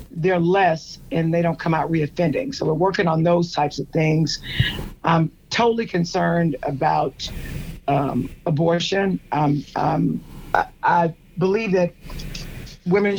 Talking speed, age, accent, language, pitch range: 130 wpm, 50-69, American, English, 160-185 Hz